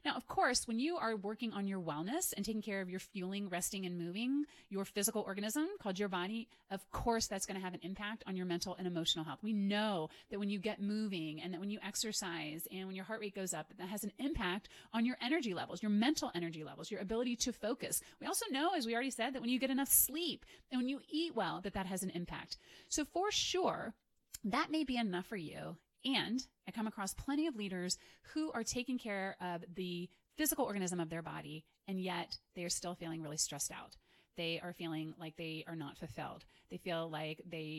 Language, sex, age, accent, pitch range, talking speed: English, female, 30-49, American, 170-230 Hz, 230 wpm